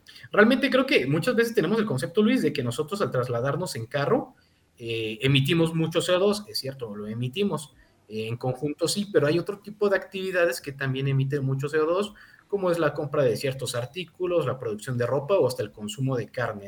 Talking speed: 200 wpm